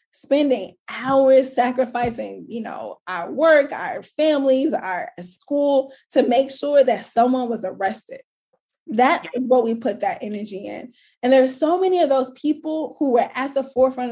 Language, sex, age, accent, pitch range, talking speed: English, female, 10-29, American, 215-270 Hz, 160 wpm